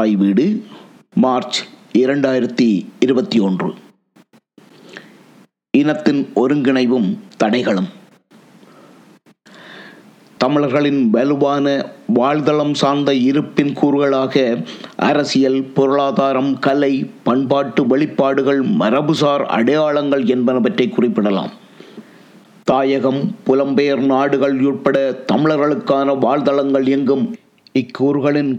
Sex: male